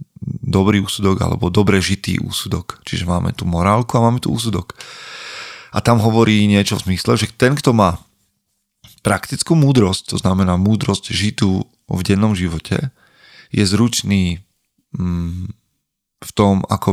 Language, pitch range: Slovak, 90-110 Hz